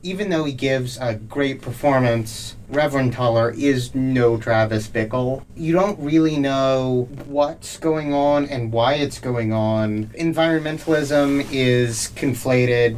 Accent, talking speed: American, 130 wpm